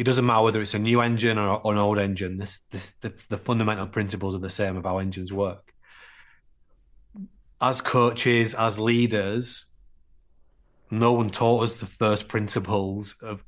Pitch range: 100-115 Hz